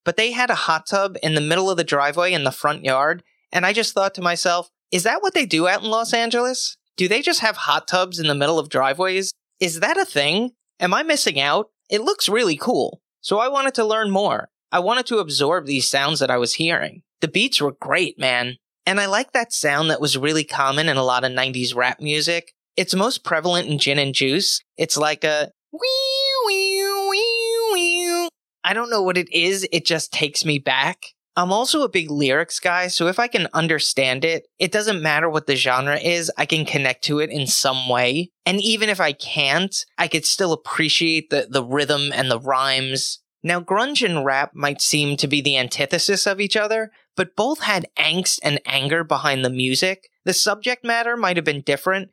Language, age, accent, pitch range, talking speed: English, 30-49, American, 145-205 Hz, 210 wpm